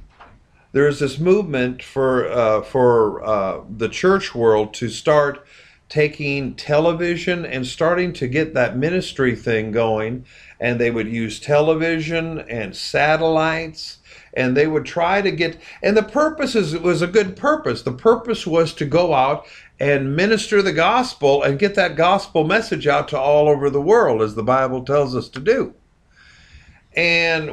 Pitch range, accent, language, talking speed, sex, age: 130-180 Hz, American, English, 160 wpm, male, 50-69